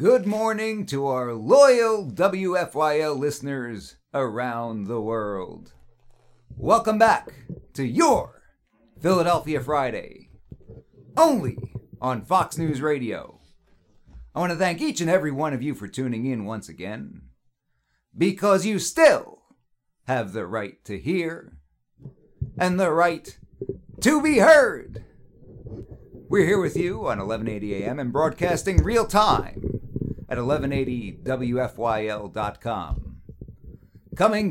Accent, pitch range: American, 110-180 Hz